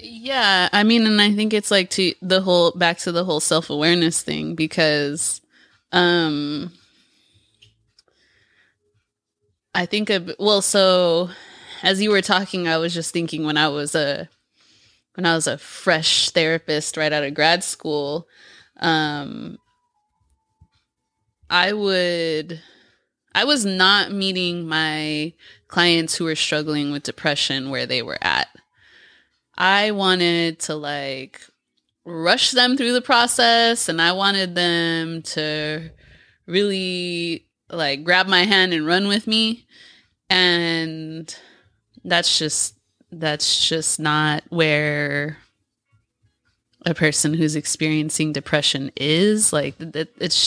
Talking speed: 120 wpm